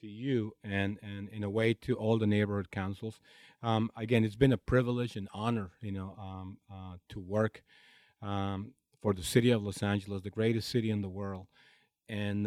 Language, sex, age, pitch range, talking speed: English, male, 40-59, 100-115 Hz, 190 wpm